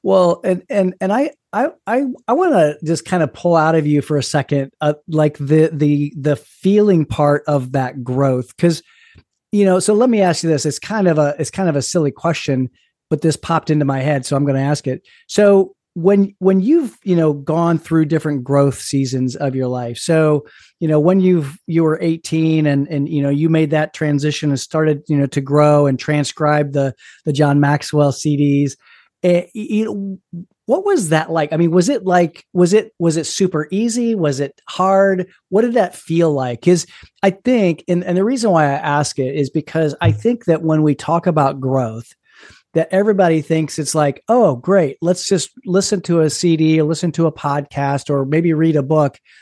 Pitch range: 145-185 Hz